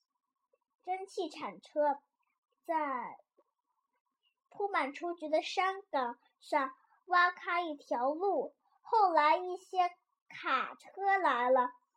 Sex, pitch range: male, 280-375 Hz